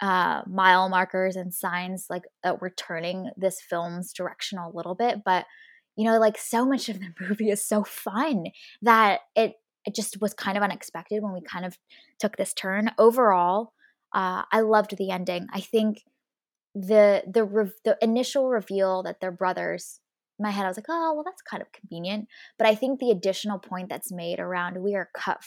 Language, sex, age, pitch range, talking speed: English, female, 10-29, 180-215 Hz, 195 wpm